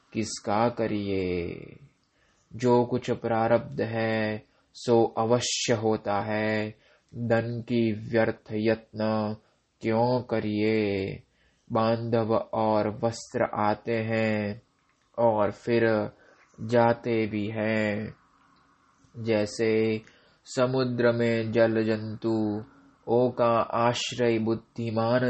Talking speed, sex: 80 wpm, male